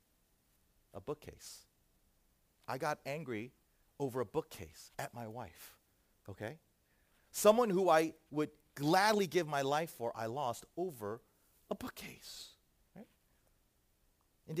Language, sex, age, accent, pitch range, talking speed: English, male, 40-59, American, 120-175 Hz, 110 wpm